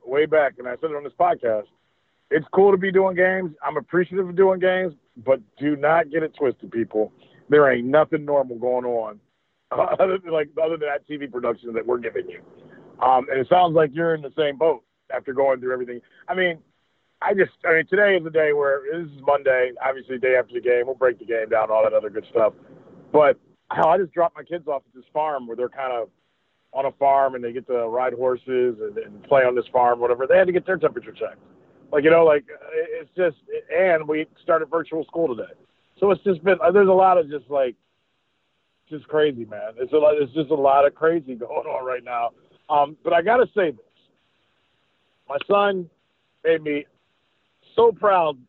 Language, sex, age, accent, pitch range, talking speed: English, male, 40-59, American, 130-180 Hz, 220 wpm